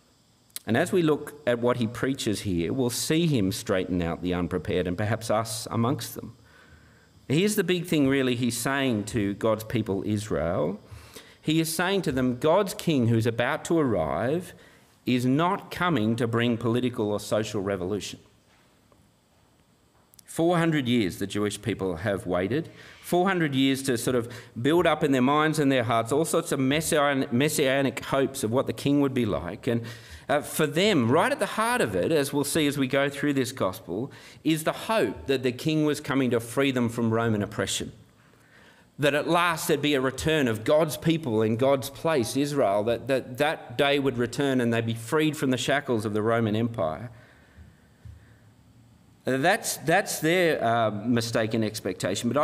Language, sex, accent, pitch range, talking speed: English, male, Australian, 110-145 Hz, 175 wpm